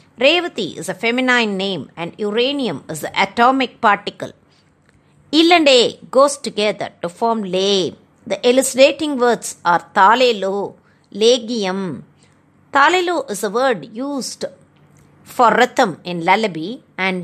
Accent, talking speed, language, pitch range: native, 130 wpm, Tamil, 205-270 Hz